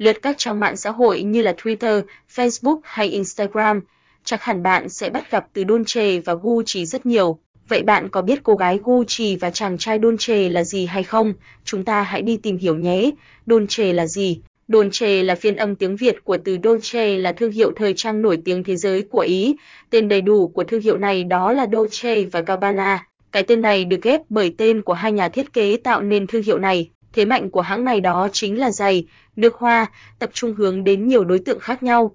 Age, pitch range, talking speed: 20-39, 195-230 Hz, 220 wpm